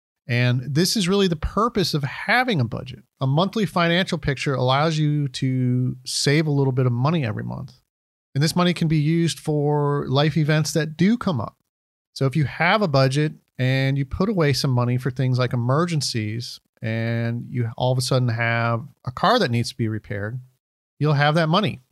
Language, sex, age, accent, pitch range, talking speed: English, male, 40-59, American, 125-165 Hz, 195 wpm